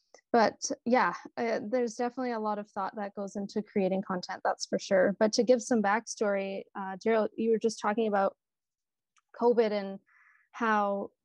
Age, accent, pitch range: 20-39, American, 195-225 Hz